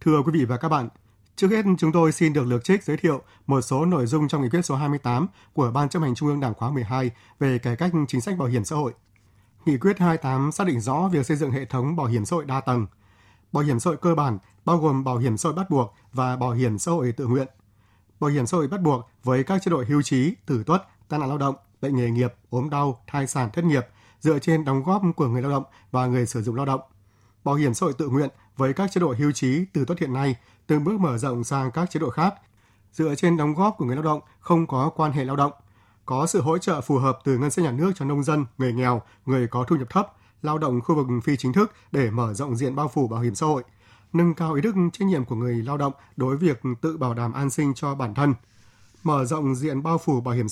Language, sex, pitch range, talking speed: Vietnamese, male, 120-155 Hz, 270 wpm